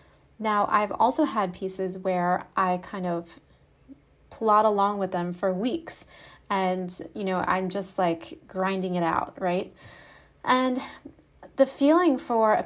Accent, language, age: American, English, 30-49